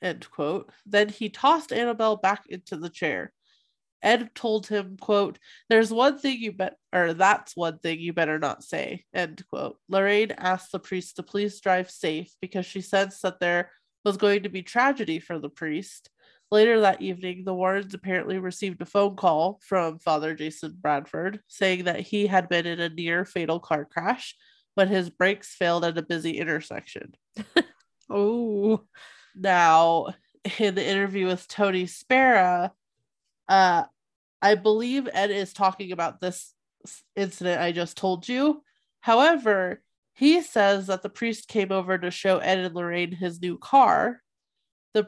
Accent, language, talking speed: American, English, 160 wpm